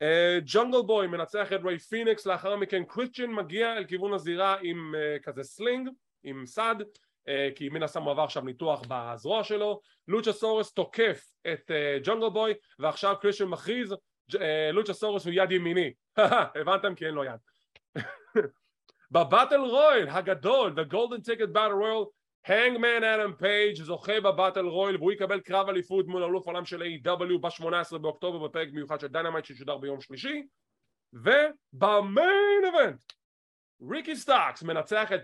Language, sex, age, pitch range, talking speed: English, male, 30-49, 160-215 Hz, 145 wpm